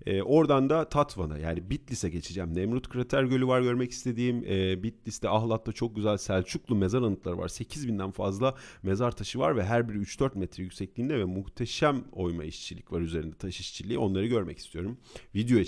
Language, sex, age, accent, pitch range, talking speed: Turkish, male, 40-59, native, 85-110 Hz, 175 wpm